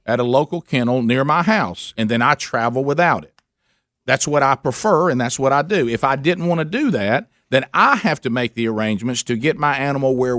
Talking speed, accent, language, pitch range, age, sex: 235 wpm, American, English, 130-170 Hz, 50-69, male